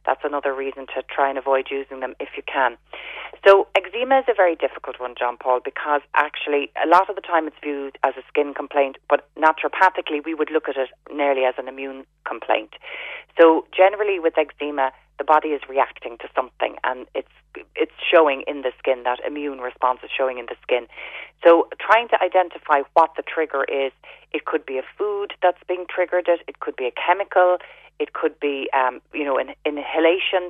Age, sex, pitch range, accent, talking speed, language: 30-49, female, 135-180 Hz, Irish, 200 wpm, English